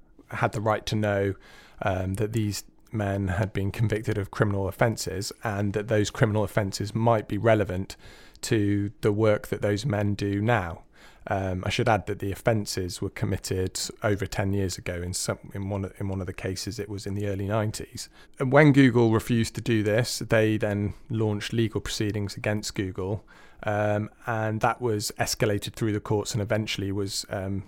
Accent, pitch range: British, 100-110 Hz